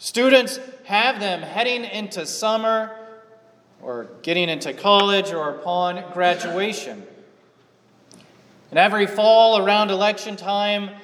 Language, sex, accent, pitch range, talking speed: English, male, American, 170-220 Hz, 105 wpm